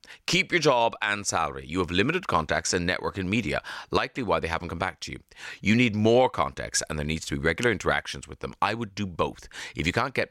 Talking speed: 245 wpm